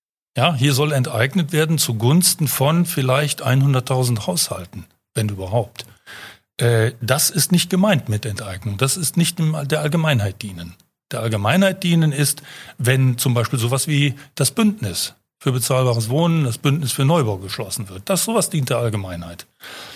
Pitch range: 115-150 Hz